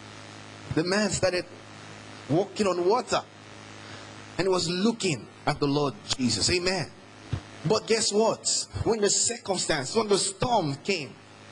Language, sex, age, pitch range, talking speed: English, male, 30-49, 115-165 Hz, 125 wpm